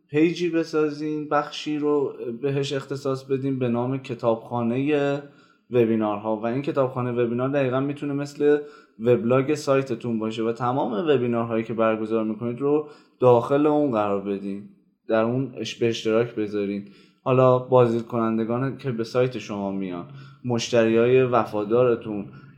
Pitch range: 110-135 Hz